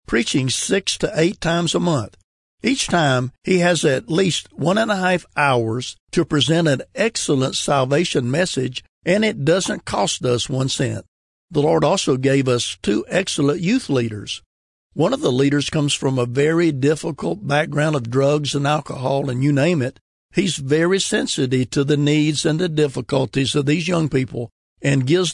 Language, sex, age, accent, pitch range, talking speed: English, male, 60-79, American, 130-160 Hz, 175 wpm